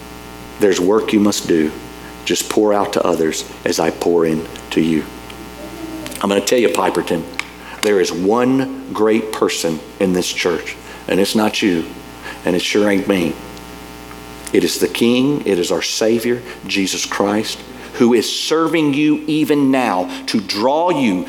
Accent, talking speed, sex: American, 165 wpm, male